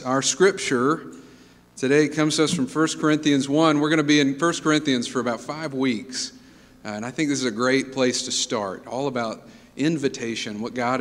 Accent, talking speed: American, 195 wpm